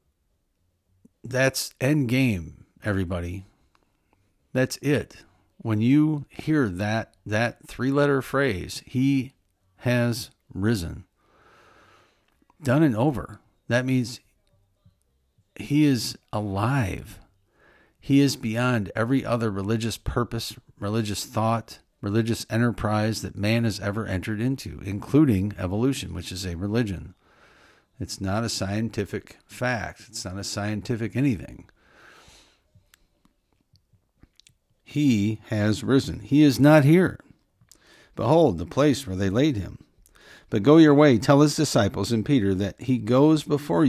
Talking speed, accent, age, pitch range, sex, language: 115 wpm, American, 50-69, 100-130 Hz, male, English